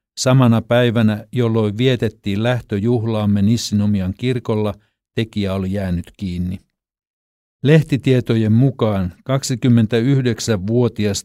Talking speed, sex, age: 75 wpm, male, 60-79